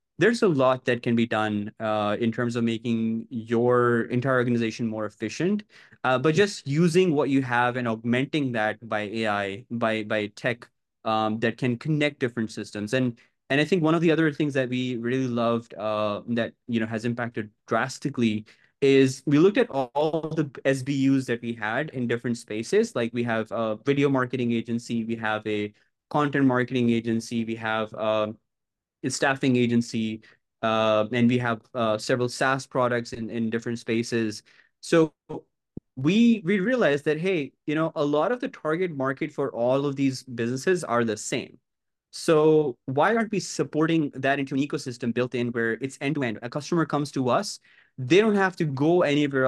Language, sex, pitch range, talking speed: English, male, 115-145 Hz, 185 wpm